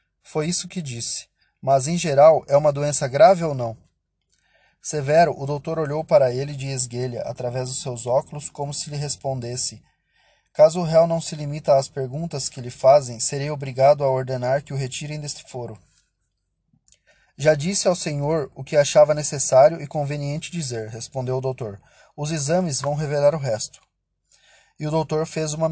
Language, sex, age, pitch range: Portuguese, male, 20-39, 130-160 Hz